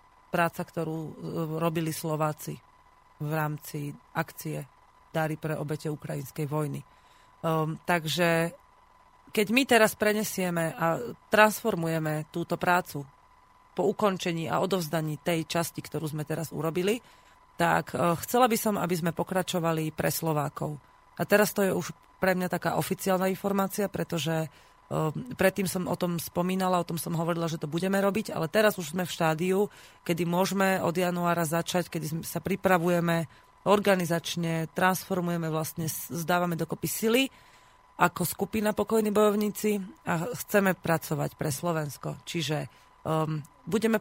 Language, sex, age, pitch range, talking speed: Slovak, female, 30-49, 160-190 Hz, 130 wpm